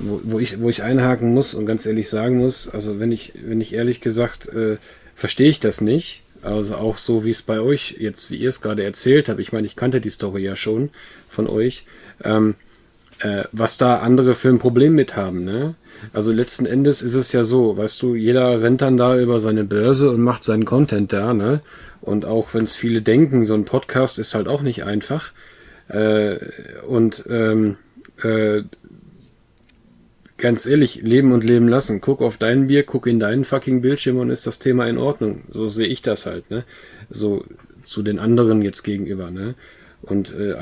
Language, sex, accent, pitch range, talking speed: German, male, German, 110-125 Hz, 200 wpm